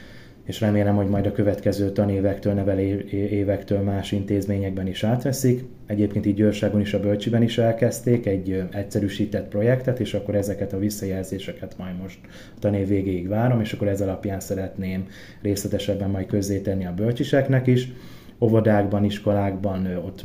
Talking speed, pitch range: 140 wpm, 100-110 Hz